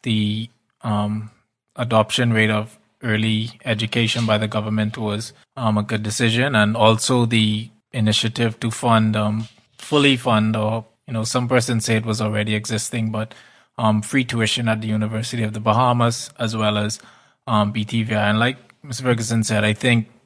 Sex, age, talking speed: male, 20-39, 165 wpm